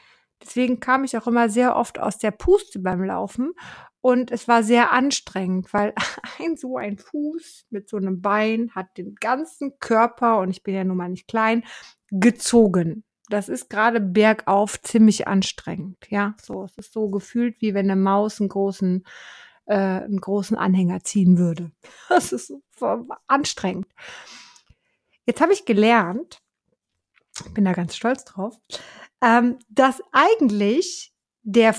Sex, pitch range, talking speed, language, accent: female, 200-265 Hz, 150 wpm, German, German